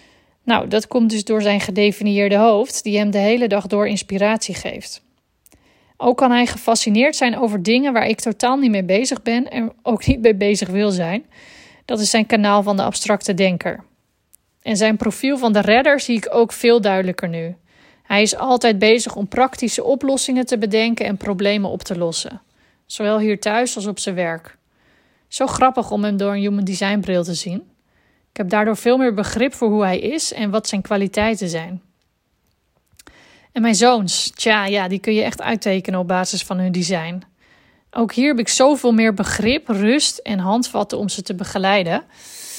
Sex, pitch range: female, 195-230 Hz